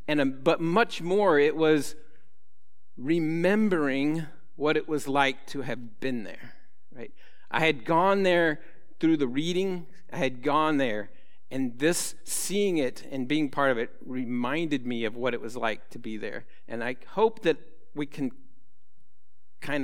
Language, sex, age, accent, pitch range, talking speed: English, male, 50-69, American, 125-160 Hz, 165 wpm